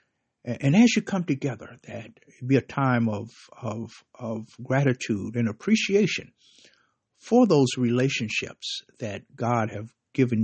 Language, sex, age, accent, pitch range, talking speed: English, male, 60-79, American, 115-135 Hz, 125 wpm